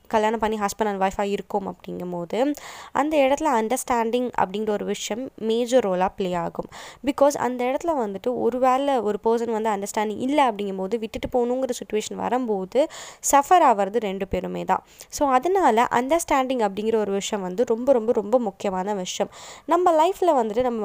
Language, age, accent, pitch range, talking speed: Tamil, 20-39, native, 205-260 Hz, 155 wpm